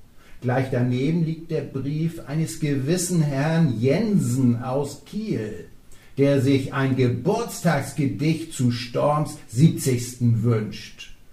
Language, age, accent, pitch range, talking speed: German, 60-79, German, 125-170 Hz, 100 wpm